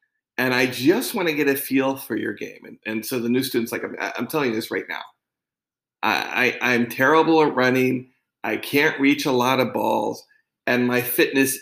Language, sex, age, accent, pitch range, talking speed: English, male, 40-59, American, 125-155 Hz, 210 wpm